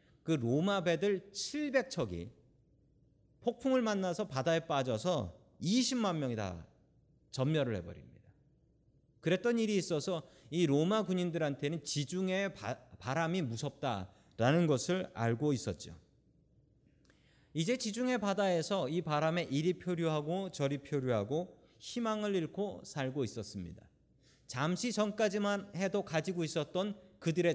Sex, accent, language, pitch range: male, native, Korean, 130-195 Hz